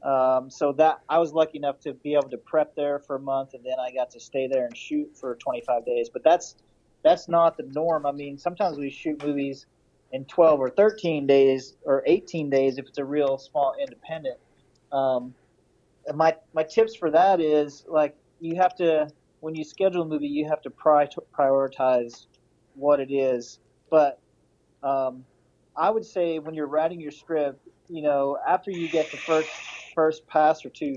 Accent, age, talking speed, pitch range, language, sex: American, 30-49, 200 wpm, 135-160 Hz, English, male